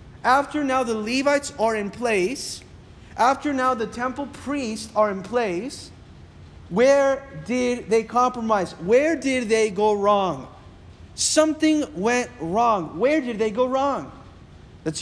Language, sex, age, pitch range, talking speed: English, male, 30-49, 190-235 Hz, 130 wpm